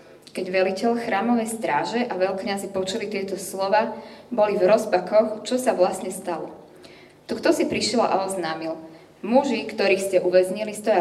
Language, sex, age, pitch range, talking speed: Slovak, female, 20-39, 180-220 Hz, 145 wpm